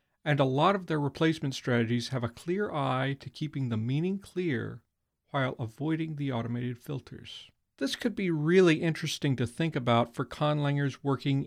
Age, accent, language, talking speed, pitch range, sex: 40-59, American, English, 165 wpm, 125-165 Hz, male